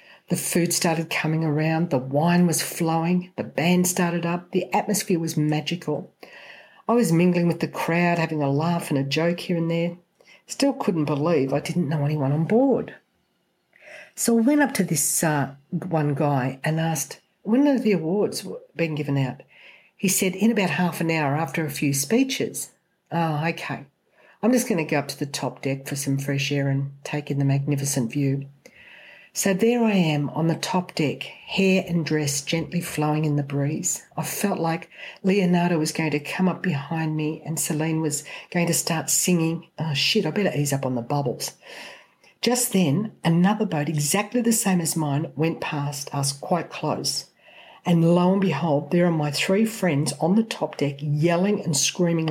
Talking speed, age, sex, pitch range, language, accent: 190 wpm, 60-79, female, 150-195 Hz, English, Australian